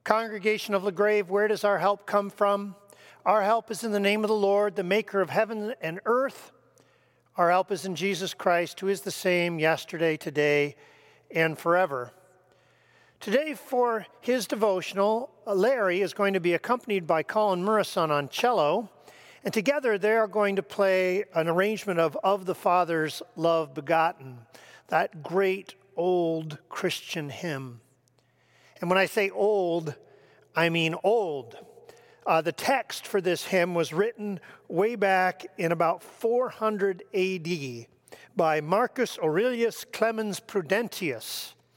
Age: 50-69